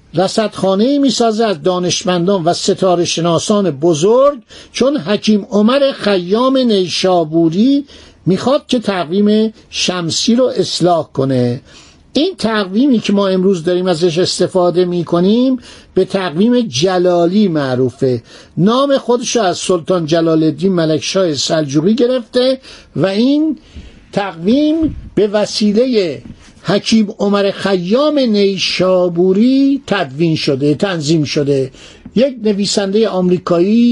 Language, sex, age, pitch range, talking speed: Persian, male, 60-79, 170-225 Hz, 100 wpm